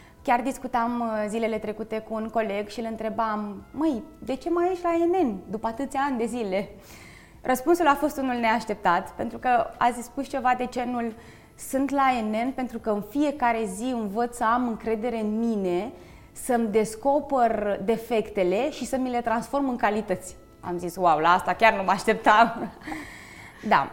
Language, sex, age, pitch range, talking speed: Romanian, female, 20-39, 210-255 Hz, 175 wpm